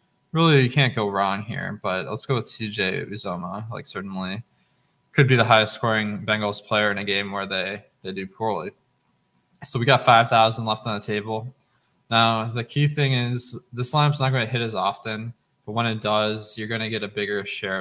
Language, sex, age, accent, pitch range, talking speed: English, male, 20-39, American, 100-120 Hz, 200 wpm